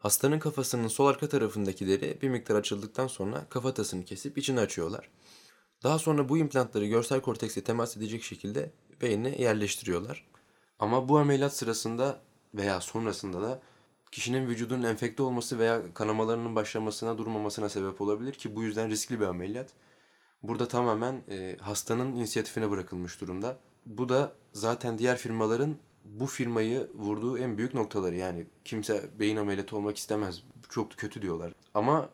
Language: Turkish